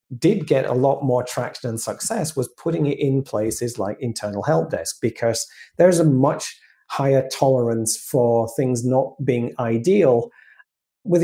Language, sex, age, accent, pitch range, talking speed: English, male, 40-59, British, 125-160 Hz, 155 wpm